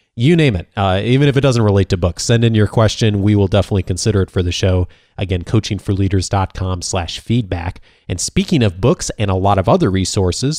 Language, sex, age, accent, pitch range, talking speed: English, male, 30-49, American, 100-120 Hz, 210 wpm